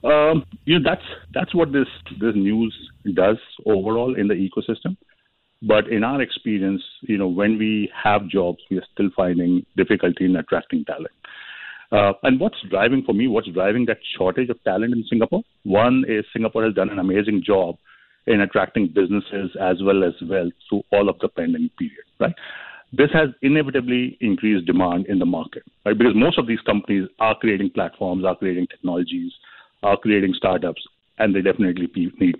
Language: English